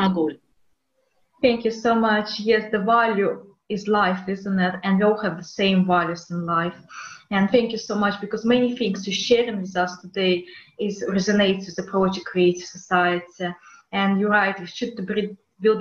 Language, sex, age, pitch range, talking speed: English, female, 20-39, 180-225 Hz, 175 wpm